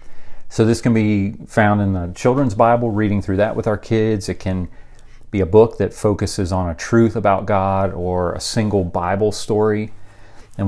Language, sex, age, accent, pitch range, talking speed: English, male, 30-49, American, 95-110 Hz, 185 wpm